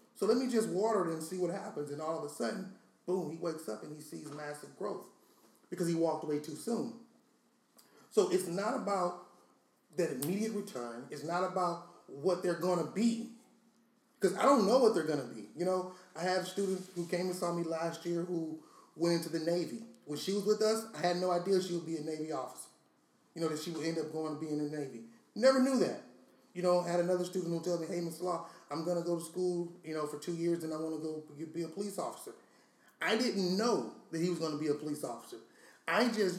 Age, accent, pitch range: 30-49, American, 155-190 Hz